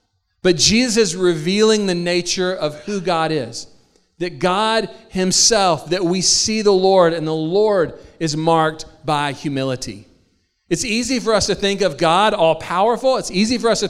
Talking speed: 165 wpm